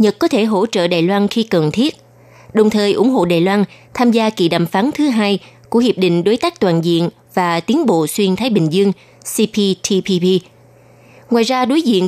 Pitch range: 175-230 Hz